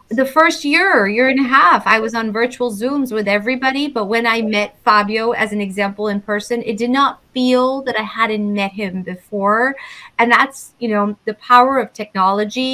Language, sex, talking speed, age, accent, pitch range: English, female, 200 wpm, 30-49, American, 210-250 Hz